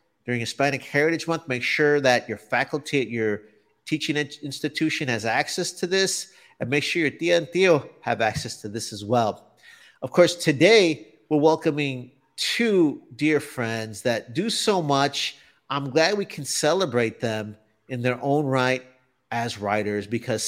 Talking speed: 160 wpm